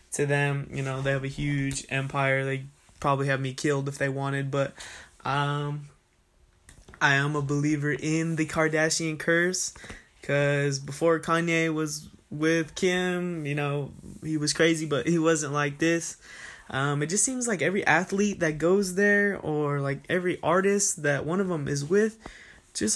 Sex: male